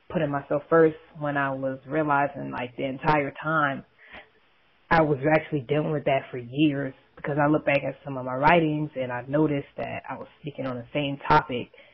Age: 20-39